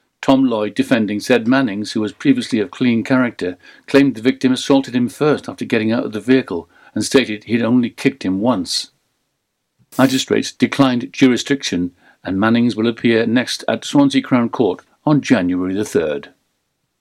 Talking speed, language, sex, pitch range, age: 160 wpm, English, male, 120-150 Hz, 60-79